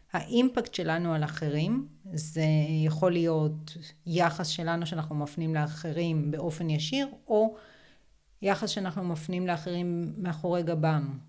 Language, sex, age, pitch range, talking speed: Hebrew, female, 30-49, 160-205 Hz, 110 wpm